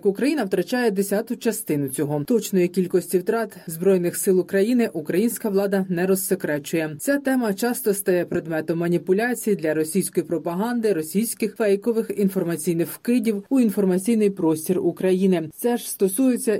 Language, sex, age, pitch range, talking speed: Ukrainian, female, 30-49, 175-215 Hz, 125 wpm